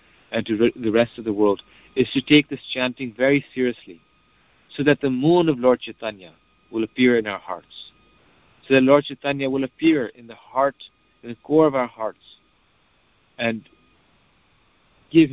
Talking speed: 170 wpm